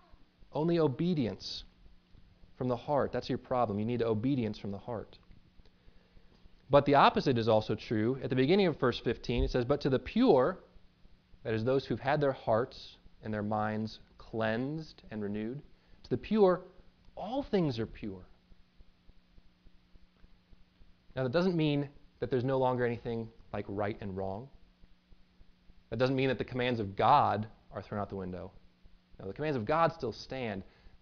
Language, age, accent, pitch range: English, 20-39, American, 105-155 Hz